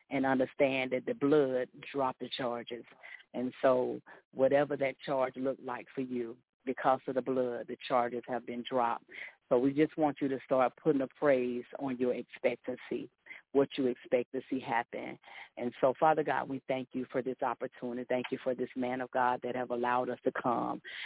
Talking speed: 195 wpm